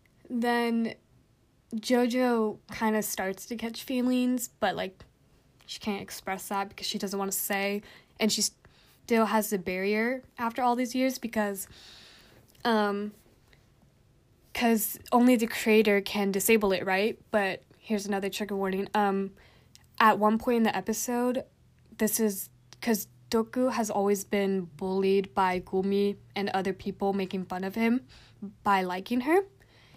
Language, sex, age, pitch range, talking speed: English, female, 10-29, 190-220 Hz, 145 wpm